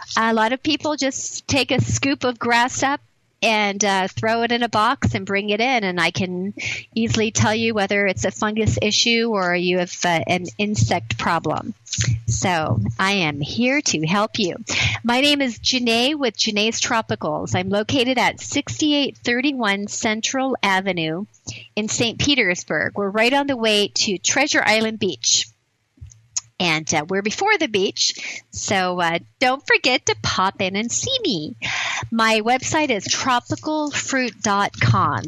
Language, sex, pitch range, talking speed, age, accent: English, female, 180-240 Hz, 155 wpm, 40-59, American